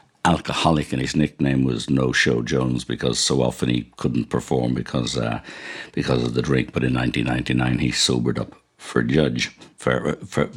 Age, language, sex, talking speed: 60-79, English, male, 170 wpm